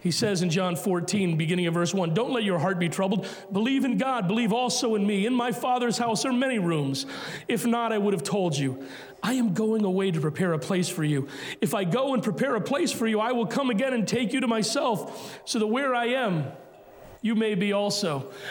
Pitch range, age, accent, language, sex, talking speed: 190-255 Hz, 40-59, American, English, male, 235 wpm